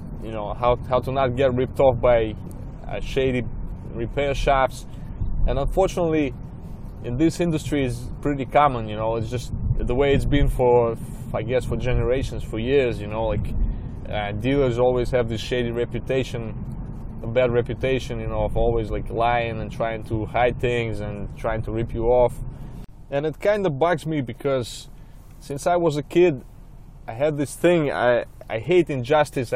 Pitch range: 115-135 Hz